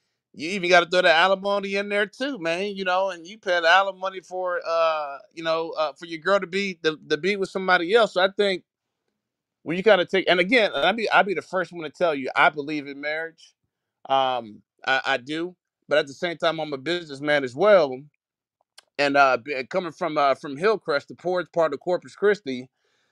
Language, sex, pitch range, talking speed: English, male, 150-190 Hz, 215 wpm